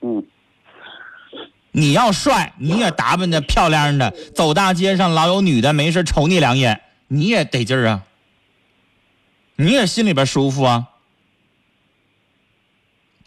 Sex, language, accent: male, Chinese, native